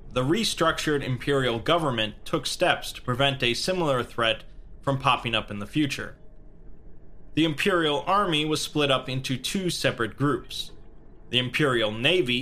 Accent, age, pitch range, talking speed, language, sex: American, 30-49, 115-140 Hz, 145 wpm, English, male